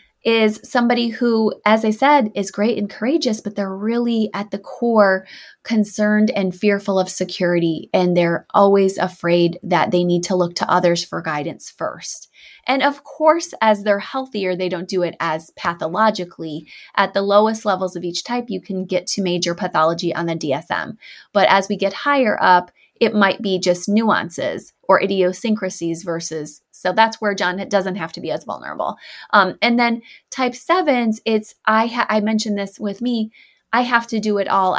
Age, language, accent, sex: 20-39, English, American, female